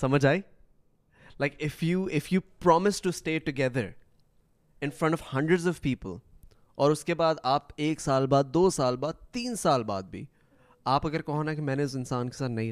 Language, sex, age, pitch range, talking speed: Urdu, male, 20-39, 110-165 Hz, 200 wpm